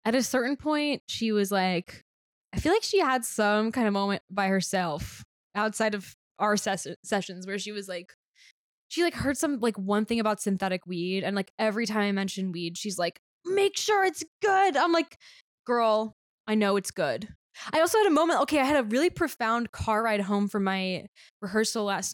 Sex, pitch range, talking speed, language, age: female, 190-225 Hz, 200 wpm, English, 10-29